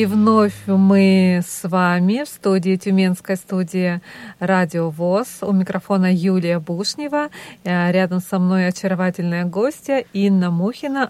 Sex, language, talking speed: female, Russian, 120 wpm